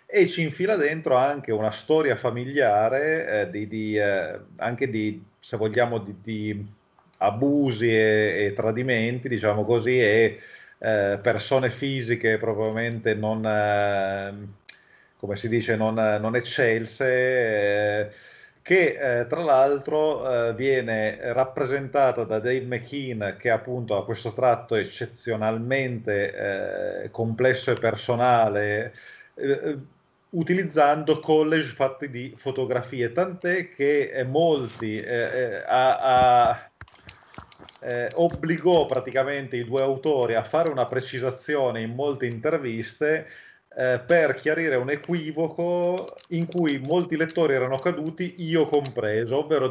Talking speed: 120 wpm